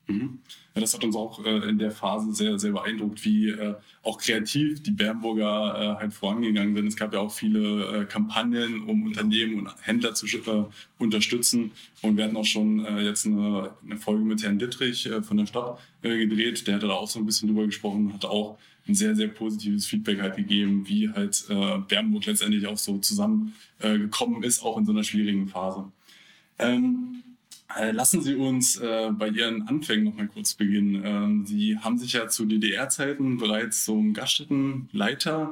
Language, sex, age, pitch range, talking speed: German, male, 20-39, 105-150 Hz, 190 wpm